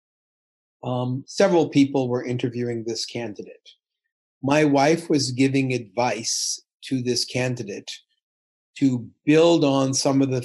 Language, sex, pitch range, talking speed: Polish, male, 130-165 Hz, 120 wpm